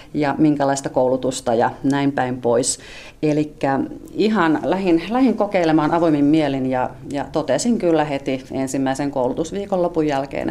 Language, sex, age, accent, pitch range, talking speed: Finnish, female, 40-59, native, 140-185 Hz, 130 wpm